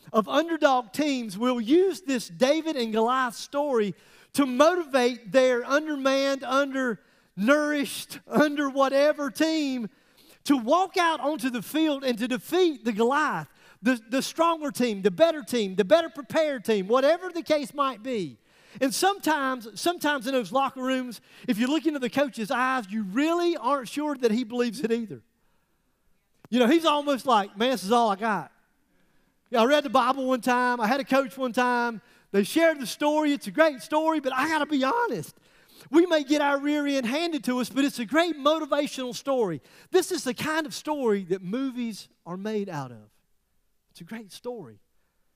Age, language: 40-59, English